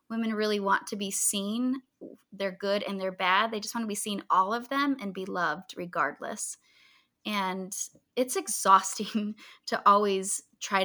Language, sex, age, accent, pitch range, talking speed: English, female, 20-39, American, 185-215 Hz, 165 wpm